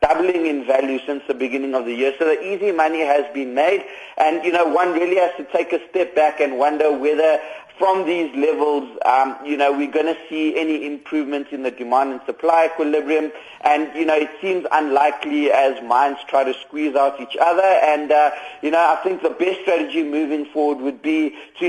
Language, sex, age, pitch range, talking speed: English, male, 30-49, 135-160 Hz, 210 wpm